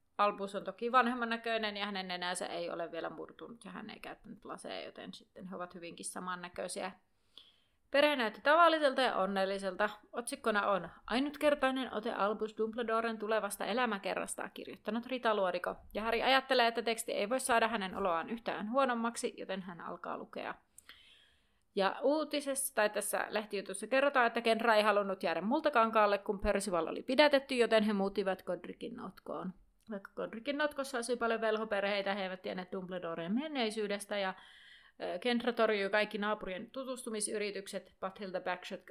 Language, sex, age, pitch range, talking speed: Finnish, female, 30-49, 190-240 Hz, 145 wpm